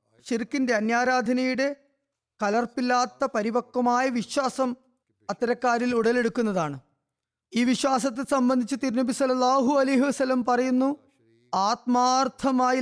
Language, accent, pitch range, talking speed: Malayalam, native, 200-260 Hz, 75 wpm